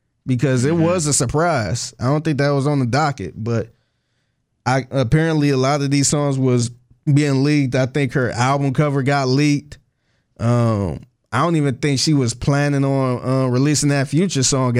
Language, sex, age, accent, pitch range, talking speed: English, male, 20-39, American, 120-150 Hz, 185 wpm